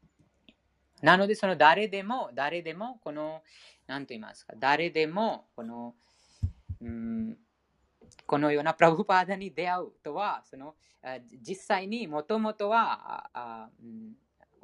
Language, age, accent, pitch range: Japanese, 20-39, Indian, 130-200 Hz